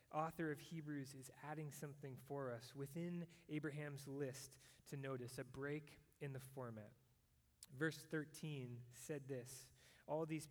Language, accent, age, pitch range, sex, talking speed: English, American, 20-39, 130-155 Hz, male, 135 wpm